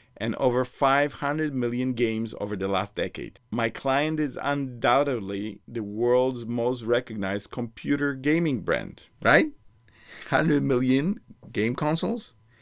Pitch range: 105-140 Hz